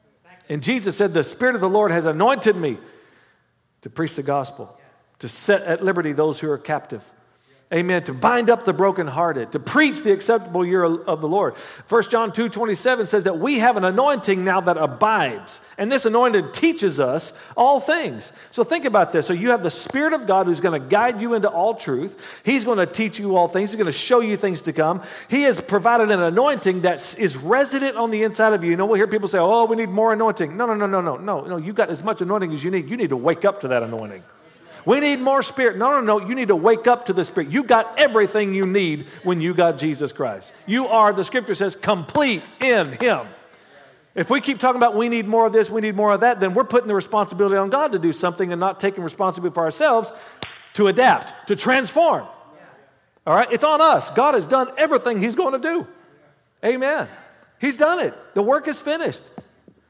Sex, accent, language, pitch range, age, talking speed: male, American, English, 180-240 Hz, 50-69, 225 wpm